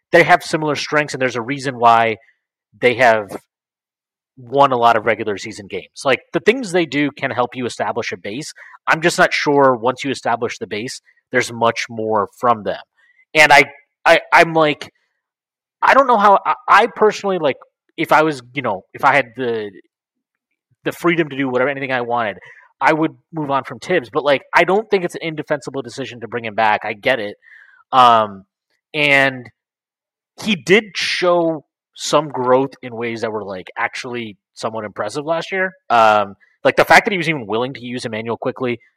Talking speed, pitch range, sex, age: 190 wpm, 115-155 Hz, male, 30-49